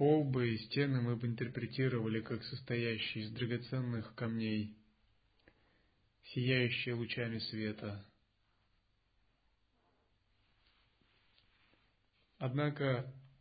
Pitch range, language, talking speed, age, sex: 105-130 Hz, Russian, 65 wpm, 30-49, male